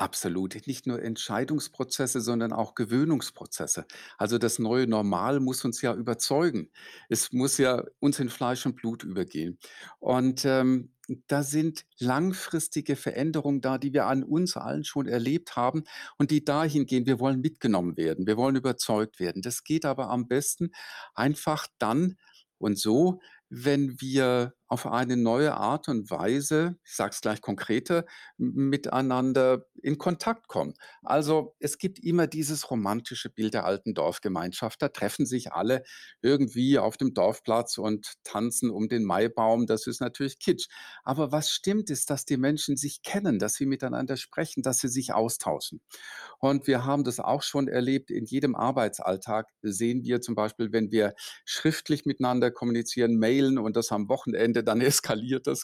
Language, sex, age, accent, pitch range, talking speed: German, male, 50-69, German, 115-145 Hz, 160 wpm